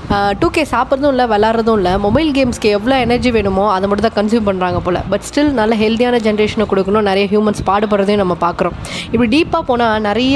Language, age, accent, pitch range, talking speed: Tamil, 20-39, native, 200-255 Hz, 190 wpm